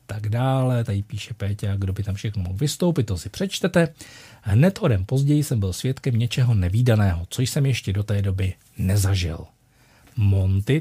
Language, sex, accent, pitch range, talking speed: Czech, male, native, 100-130 Hz, 160 wpm